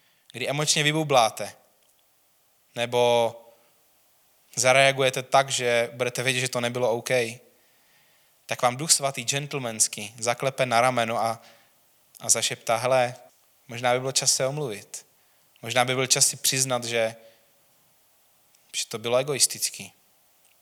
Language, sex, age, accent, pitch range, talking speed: Czech, male, 20-39, native, 110-130 Hz, 120 wpm